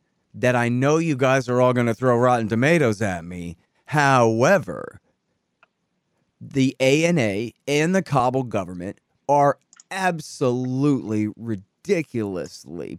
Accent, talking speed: American, 110 wpm